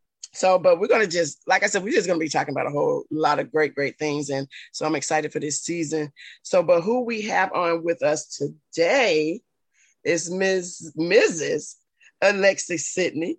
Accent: American